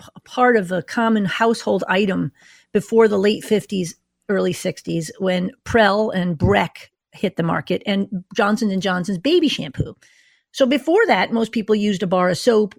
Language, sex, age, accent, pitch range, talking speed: English, female, 40-59, American, 185-230 Hz, 170 wpm